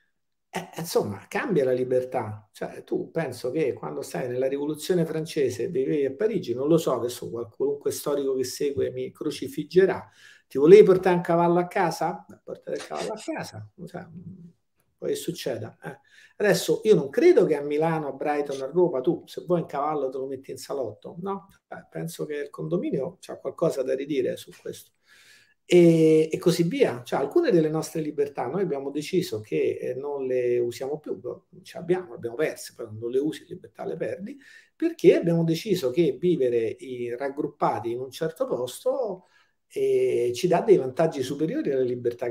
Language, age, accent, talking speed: Italian, 50-69, native, 175 wpm